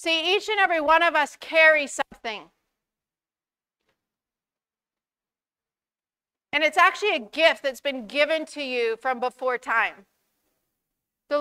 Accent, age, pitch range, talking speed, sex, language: American, 40-59, 275-325 Hz, 120 wpm, female, English